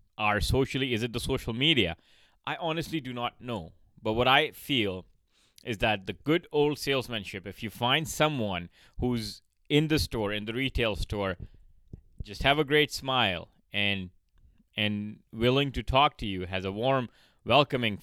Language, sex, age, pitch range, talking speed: English, male, 30-49, 90-125 Hz, 165 wpm